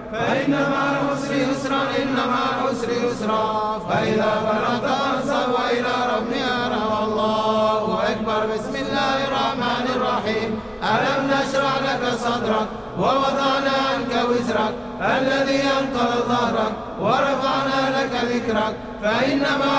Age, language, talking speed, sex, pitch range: 50-69, Indonesian, 105 wpm, male, 220-270 Hz